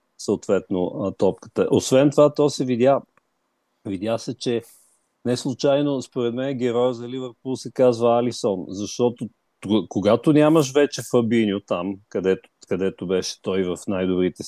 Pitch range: 105-140 Hz